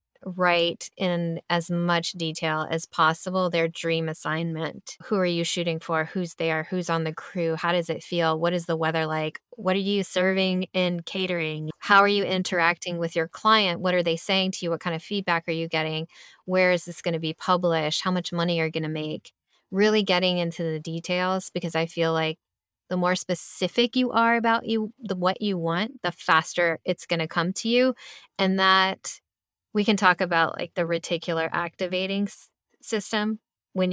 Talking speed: 195 wpm